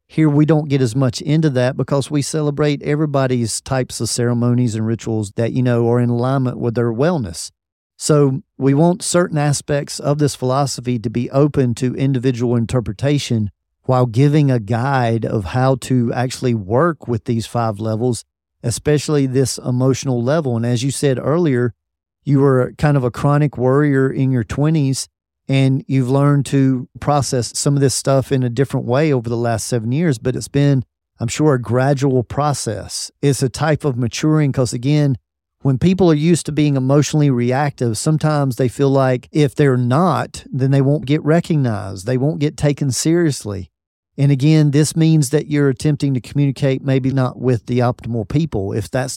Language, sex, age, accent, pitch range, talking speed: English, male, 40-59, American, 120-145 Hz, 180 wpm